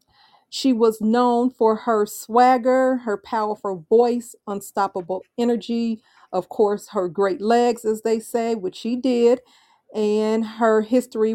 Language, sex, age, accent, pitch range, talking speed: English, female, 40-59, American, 205-235 Hz, 130 wpm